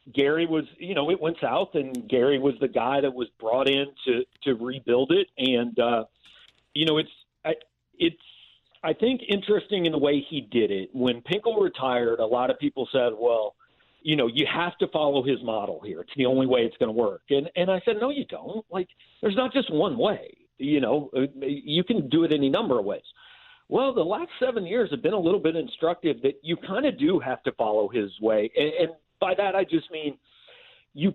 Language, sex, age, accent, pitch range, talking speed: English, male, 50-69, American, 135-220 Hz, 220 wpm